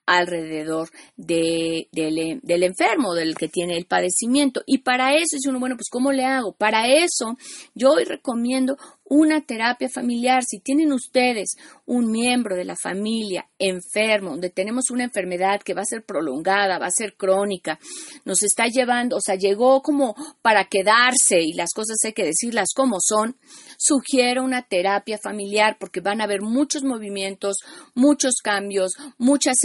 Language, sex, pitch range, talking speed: Spanish, female, 190-250 Hz, 160 wpm